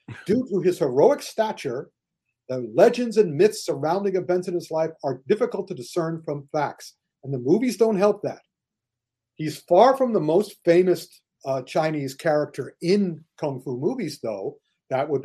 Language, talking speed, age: English, 165 wpm, 50-69